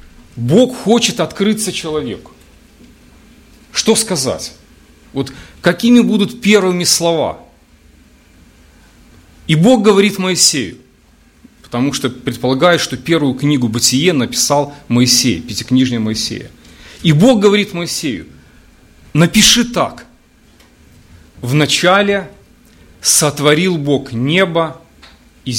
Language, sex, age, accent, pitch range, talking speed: Russian, male, 40-59, native, 120-185 Hz, 85 wpm